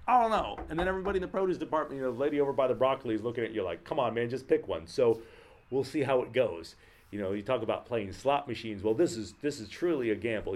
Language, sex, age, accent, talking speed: English, male, 40-59, American, 290 wpm